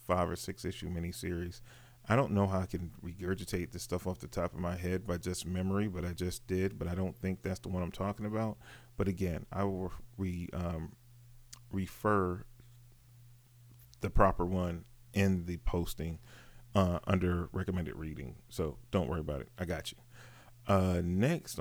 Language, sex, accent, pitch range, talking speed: English, male, American, 90-105 Hz, 175 wpm